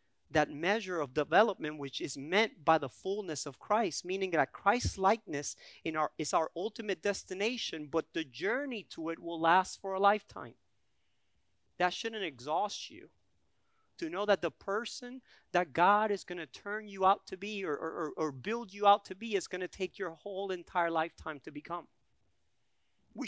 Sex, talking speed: male, 180 wpm